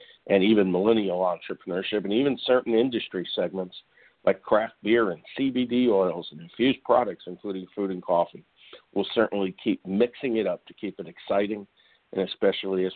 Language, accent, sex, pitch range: English, American, male, 90-115 Hz